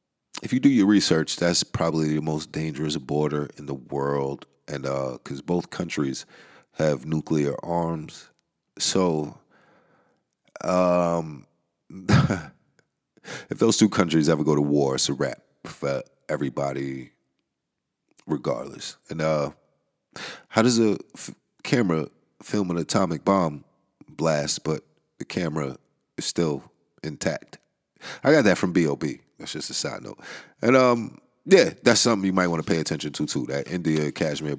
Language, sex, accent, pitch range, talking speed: English, male, American, 75-95 Hz, 140 wpm